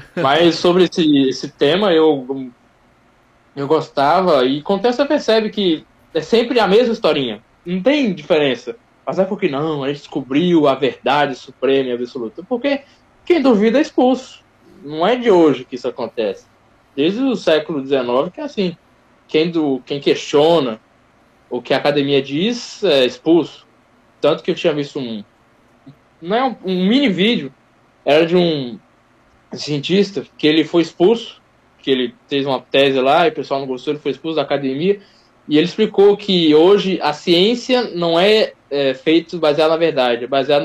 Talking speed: 170 wpm